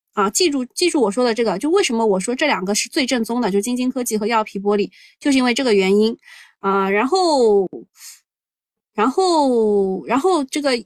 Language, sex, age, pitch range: Chinese, female, 20-39, 205-295 Hz